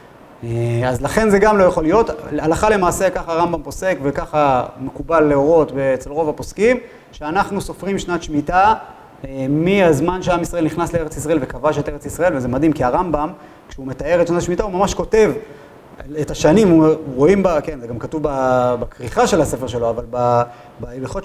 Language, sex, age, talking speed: Hebrew, male, 30-49, 170 wpm